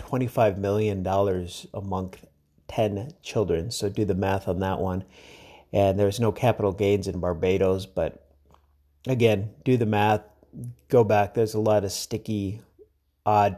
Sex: male